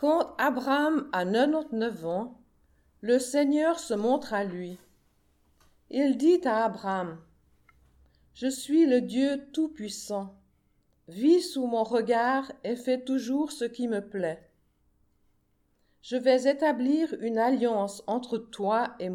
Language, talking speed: French, 125 wpm